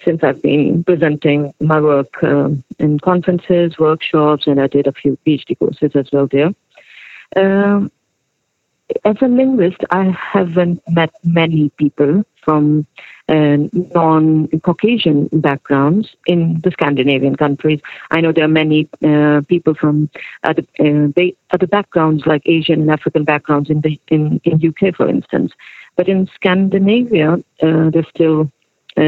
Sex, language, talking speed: female, English, 135 wpm